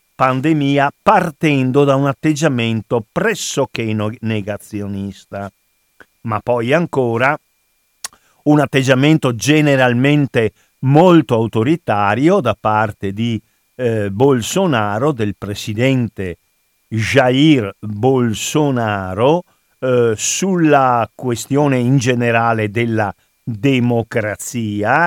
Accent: native